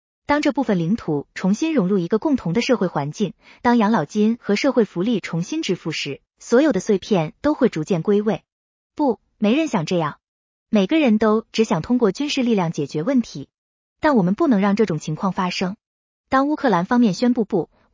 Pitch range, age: 180-250 Hz, 20-39